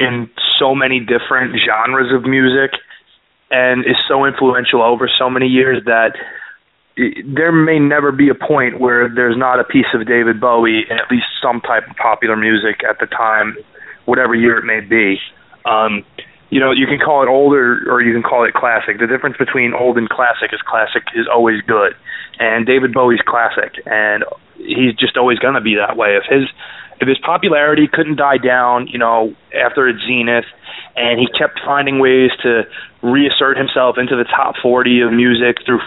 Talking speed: 185 wpm